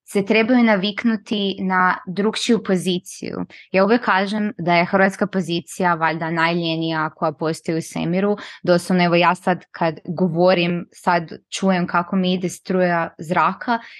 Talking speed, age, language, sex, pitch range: 135 wpm, 20-39, Croatian, female, 180-215 Hz